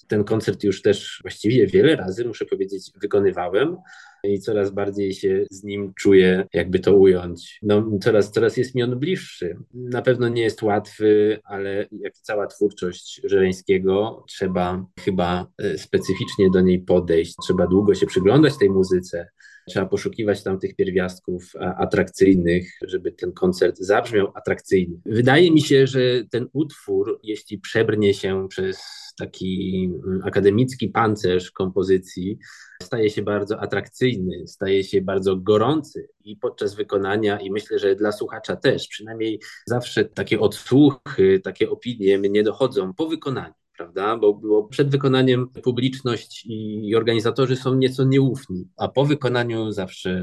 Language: Polish